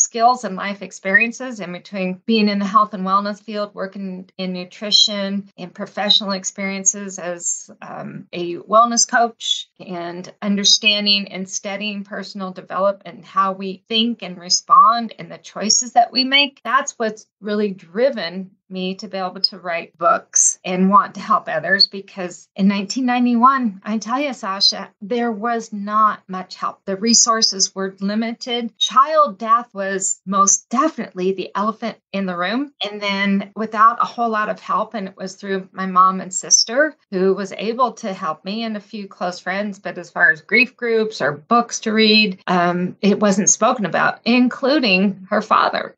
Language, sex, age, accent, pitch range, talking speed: English, female, 40-59, American, 190-225 Hz, 170 wpm